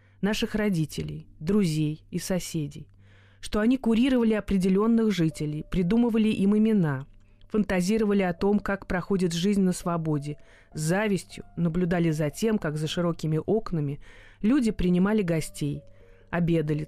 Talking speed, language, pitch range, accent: 120 wpm, Russian, 160-215 Hz, native